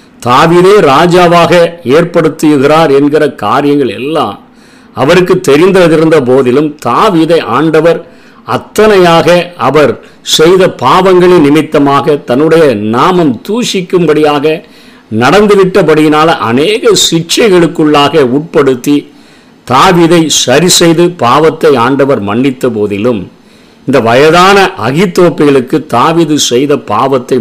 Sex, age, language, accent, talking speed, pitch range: male, 50-69, Tamil, native, 75 wpm, 140-175 Hz